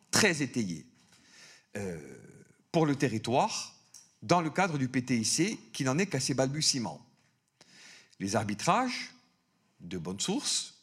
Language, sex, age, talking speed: French, male, 50-69, 120 wpm